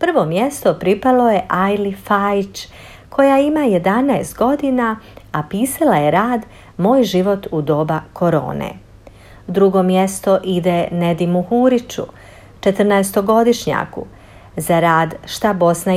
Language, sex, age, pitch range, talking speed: Croatian, female, 50-69, 170-230 Hz, 110 wpm